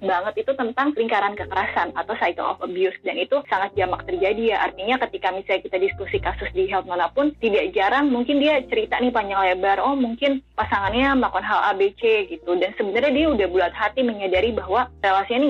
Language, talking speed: Indonesian, 190 wpm